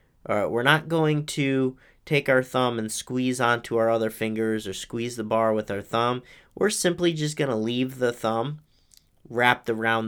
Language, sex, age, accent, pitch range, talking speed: English, male, 30-49, American, 110-135 Hz, 190 wpm